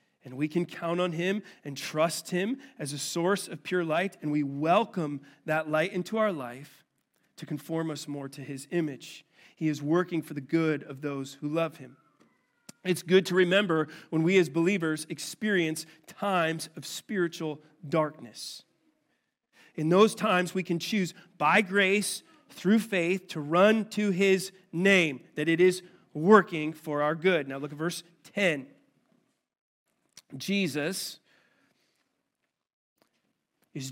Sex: male